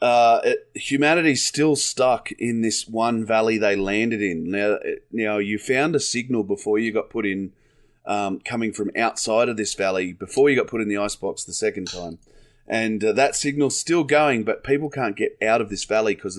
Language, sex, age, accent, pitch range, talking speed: English, male, 30-49, Australian, 100-125 Hz, 210 wpm